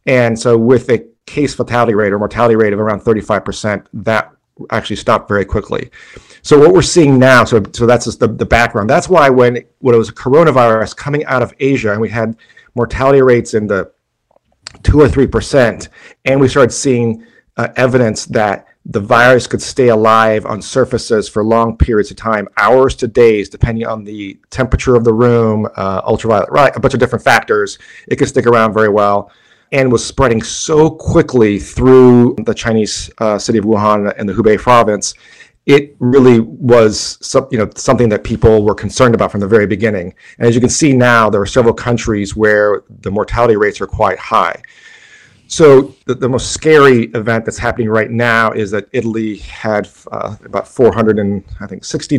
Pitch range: 110-125 Hz